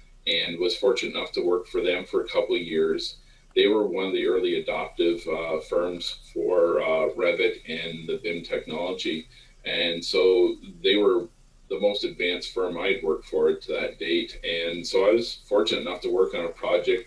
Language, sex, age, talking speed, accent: English, male, 40-59, 190 wpm, American